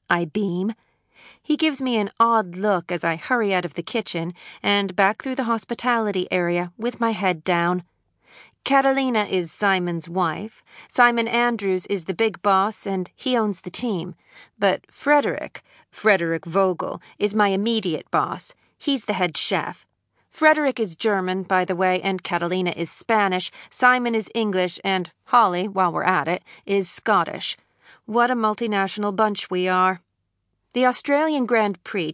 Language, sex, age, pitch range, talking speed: English, female, 40-59, 180-225 Hz, 155 wpm